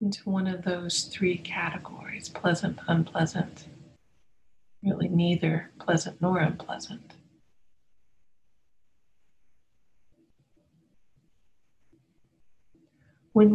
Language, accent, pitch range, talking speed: English, American, 160-195 Hz, 60 wpm